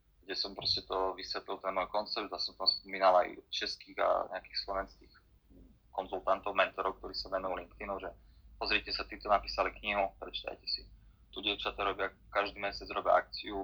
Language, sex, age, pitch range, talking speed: Slovak, male, 20-39, 95-105 Hz, 165 wpm